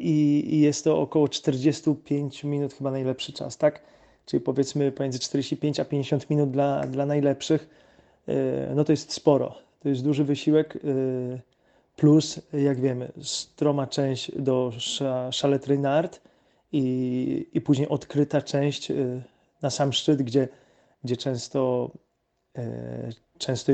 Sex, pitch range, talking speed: male, 125-145 Hz, 120 wpm